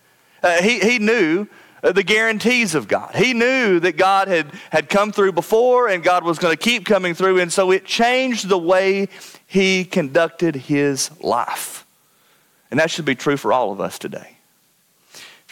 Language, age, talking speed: English, 40-59, 180 wpm